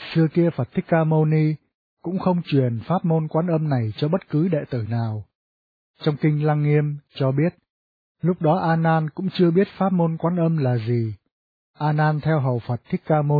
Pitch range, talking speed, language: 130-165 Hz, 215 wpm, Vietnamese